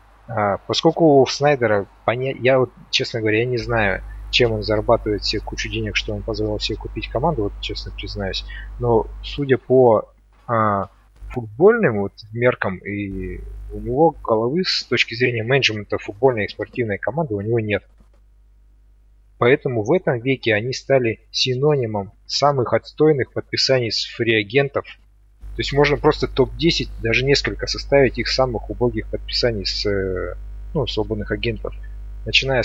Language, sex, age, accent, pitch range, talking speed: Russian, male, 30-49, native, 105-125 Hz, 140 wpm